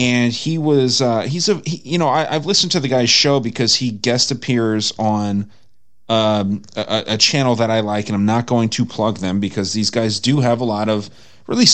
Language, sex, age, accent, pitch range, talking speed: English, male, 30-49, American, 110-130 Hz, 215 wpm